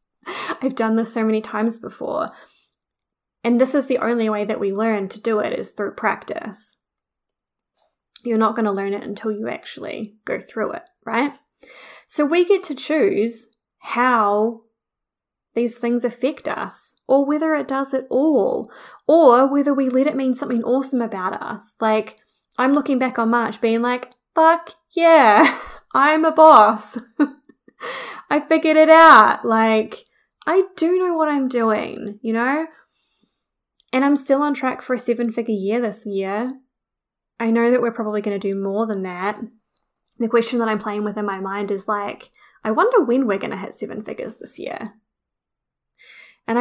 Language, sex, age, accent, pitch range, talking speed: English, female, 20-39, Australian, 215-275 Hz, 170 wpm